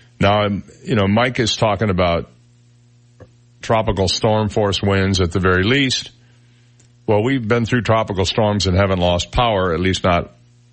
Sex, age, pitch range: male, 50-69, 100-125 Hz